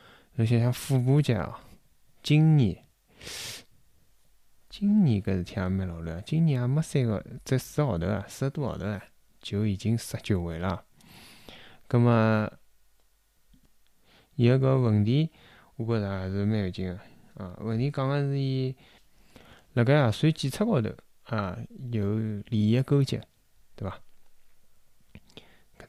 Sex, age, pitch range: male, 20-39, 100-125 Hz